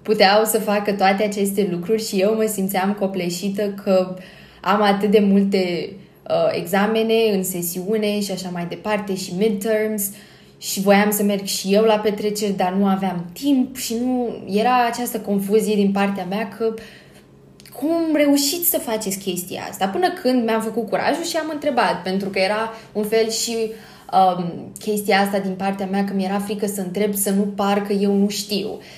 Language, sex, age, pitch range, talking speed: Romanian, female, 20-39, 190-225 Hz, 175 wpm